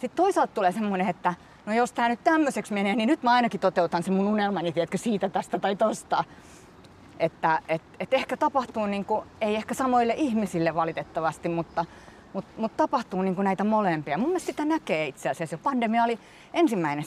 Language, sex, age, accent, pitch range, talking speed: Finnish, female, 30-49, native, 160-220 Hz, 185 wpm